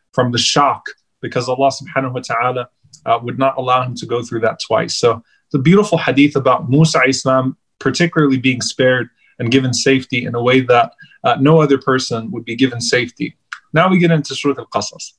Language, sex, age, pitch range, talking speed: English, male, 30-49, 120-140 Hz, 195 wpm